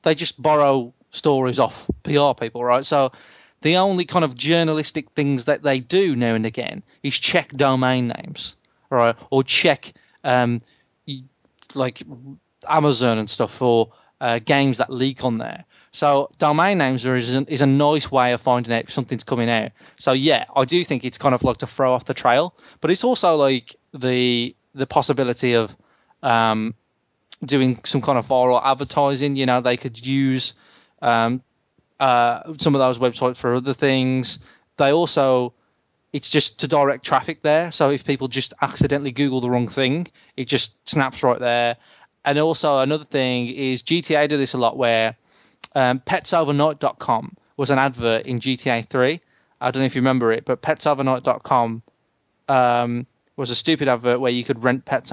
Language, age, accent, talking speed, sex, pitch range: English, 30-49, British, 170 wpm, male, 125-145 Hz